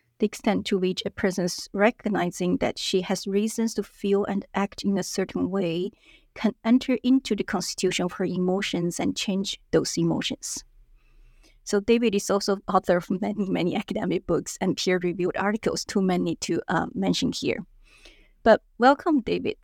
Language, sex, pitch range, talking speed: English, female, 185-215 Hz, 160 wpm